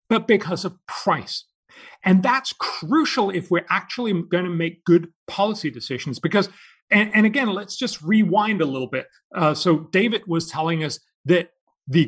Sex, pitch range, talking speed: male, 145-190 Hz, 170 wpm